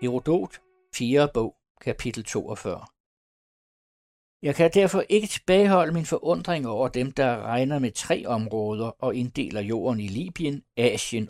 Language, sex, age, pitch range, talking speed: Danish, male, 60-79, 110-150 Hz, 135 wpm